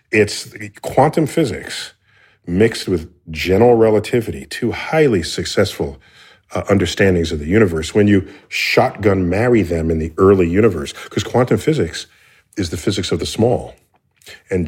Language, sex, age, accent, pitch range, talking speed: English, male, 40-59, American, 90-115 Hz, 140 wpm